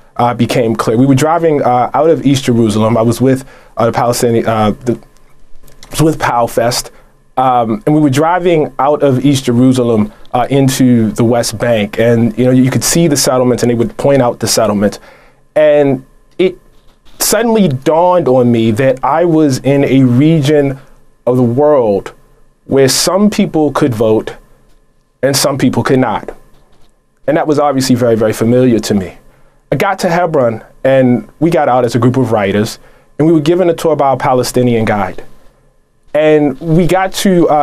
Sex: male